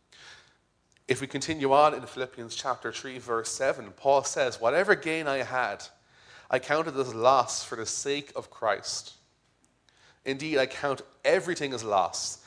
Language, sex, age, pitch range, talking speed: English, male, 30-49, 105-135 Hz, 150 wpm